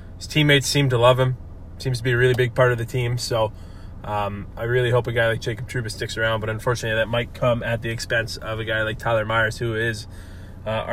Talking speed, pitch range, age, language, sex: 245 wpm, 110-130 Hz, 20-39, English, male